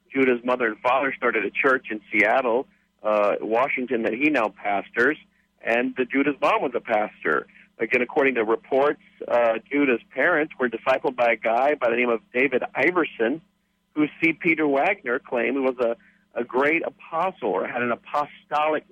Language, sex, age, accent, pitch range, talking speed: English, male, 50-69, American, 120-160 Hz, 175 wpm